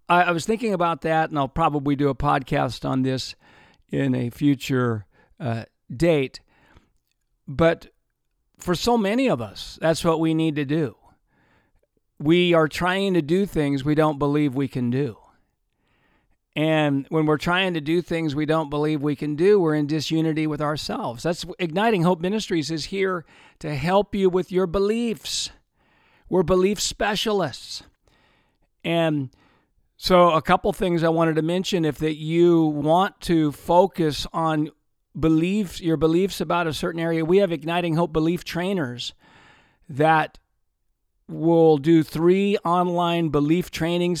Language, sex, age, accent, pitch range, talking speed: English, male, 50-69, American, 150-175 Hz, 150 wpm